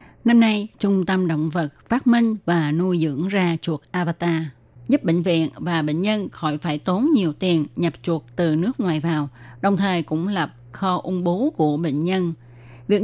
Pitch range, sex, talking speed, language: 155-205 Hz, female, 195 wpm, Vietnamese